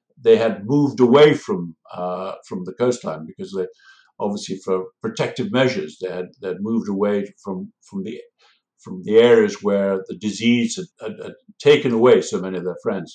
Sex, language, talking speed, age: male, English, 185 wpm, 60-79